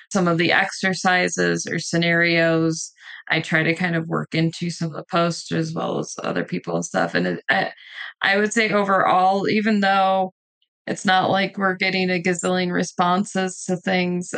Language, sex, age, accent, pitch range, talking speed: English, female, 20-39, American, 175-205 Hz, 180 wpm